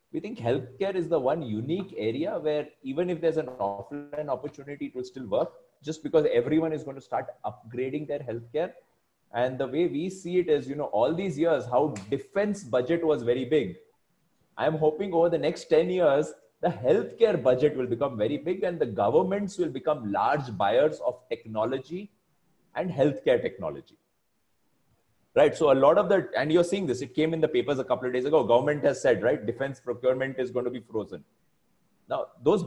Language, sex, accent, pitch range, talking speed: English, male, Indian, 120-165 Hz, 195 wpm